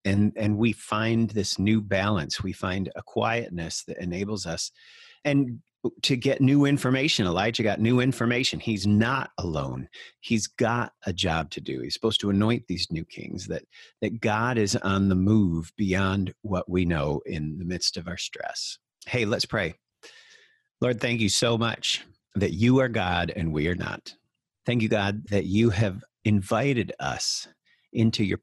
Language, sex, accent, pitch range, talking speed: English, male, American, 95-120 Hz, 175 wpm